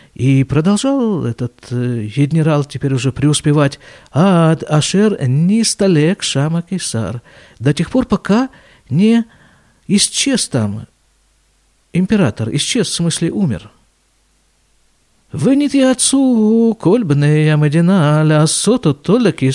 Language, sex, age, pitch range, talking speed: Russian, male, 50-69, 125-190 Hz, 100 wpm